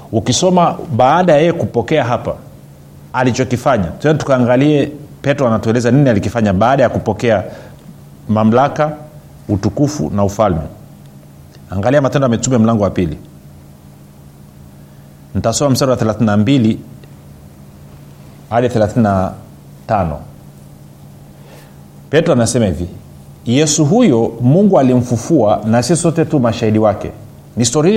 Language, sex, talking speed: Swahili, male, 100 wpm